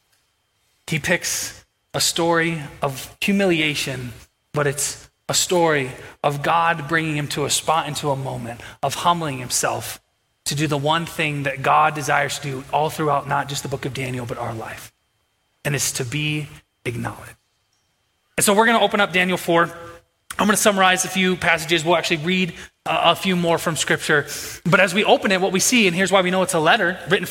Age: 20-39